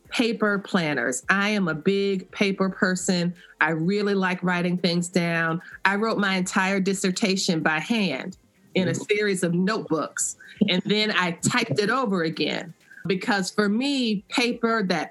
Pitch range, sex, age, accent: 185-230 Hz, female, 30-49, American